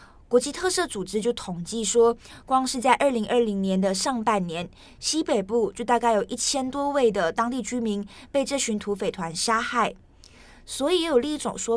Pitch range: 205-260 Hz